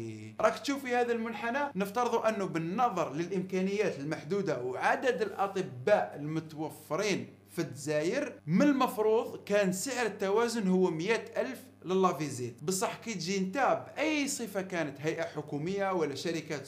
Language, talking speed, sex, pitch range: Arabic, 120 wpm, male, 165-225 Hz